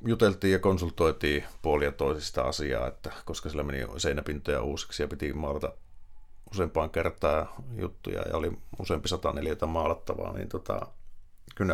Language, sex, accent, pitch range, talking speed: Finnish, male, native, 75-100 Hz, 135 wpm